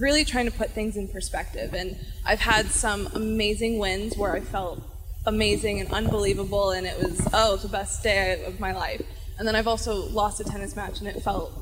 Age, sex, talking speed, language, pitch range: 20-39, female, 205 wpm, English, 195-225 Hz